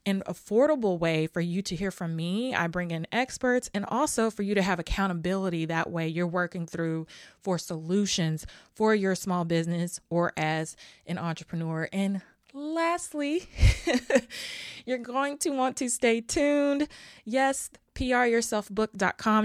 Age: 20-39